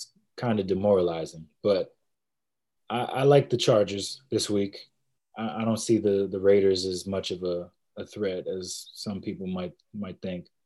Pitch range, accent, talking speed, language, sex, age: 95-120 Hz, American, 170 wpm, English, male, 20-39